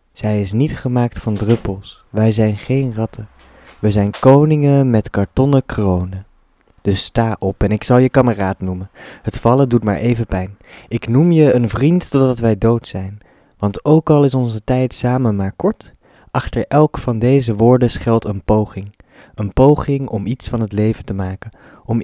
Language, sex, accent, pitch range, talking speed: Dutch, male, Dutch, 100-125 Hz, 180 wpm